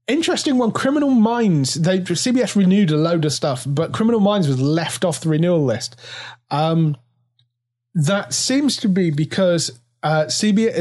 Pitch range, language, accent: 130-180 Hz, English, British